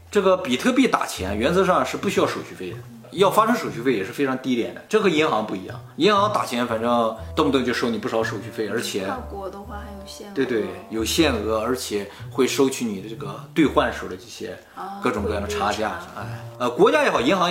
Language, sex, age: Chinese, male, 30-49